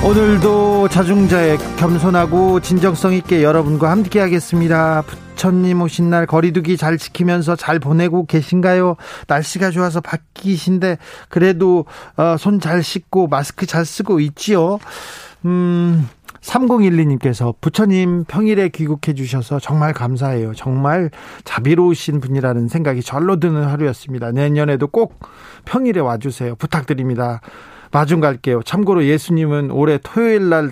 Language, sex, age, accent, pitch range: Korean, male, 40-59, native, 135-180 Hz